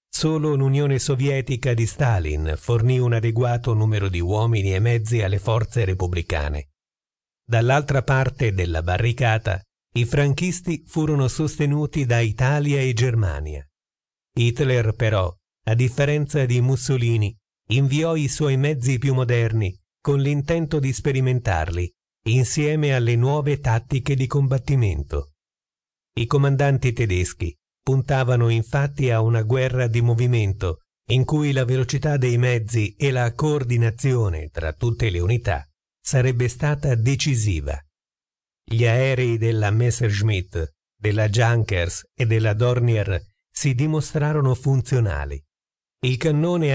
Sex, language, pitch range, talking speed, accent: male, Italian, 105-135 Hz, 115 wpm, native